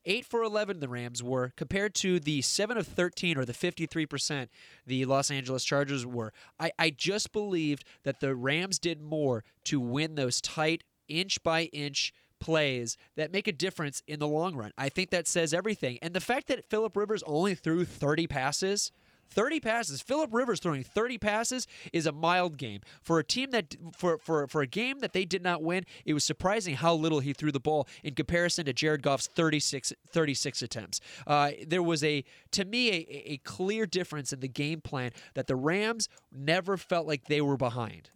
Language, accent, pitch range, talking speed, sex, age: English, American, 140-185 Hz, 185 wpm, male, 20-39